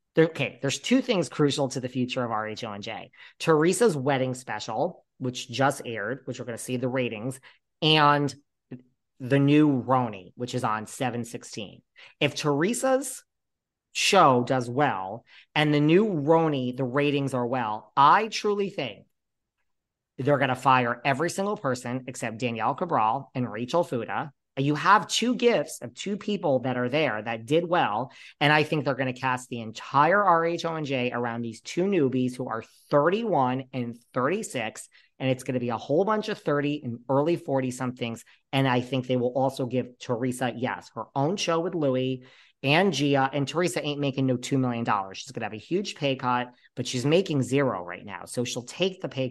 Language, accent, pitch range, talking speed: English, American, 125-150 Hz, 185 wpm